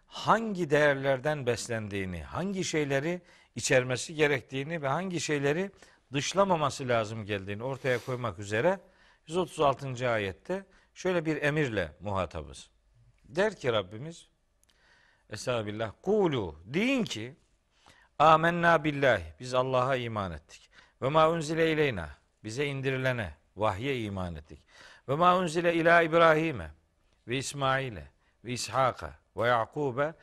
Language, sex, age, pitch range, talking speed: Turkish, male, 50-69, 110-160 Hz, 100 wpm